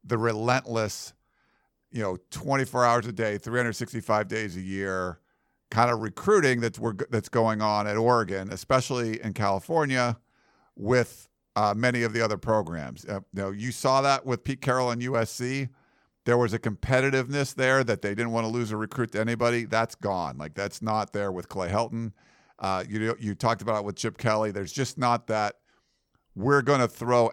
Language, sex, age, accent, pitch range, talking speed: English, male, 50-69, American, 105-130 Hz, 185 wpm